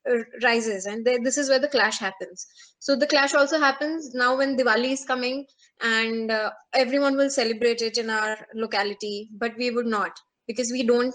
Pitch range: 225-270 Hz